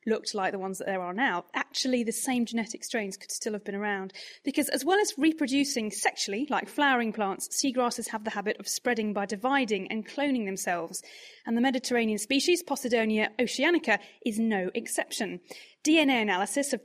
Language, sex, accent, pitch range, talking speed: English, female, British, 205-270 Hz, 180 wpm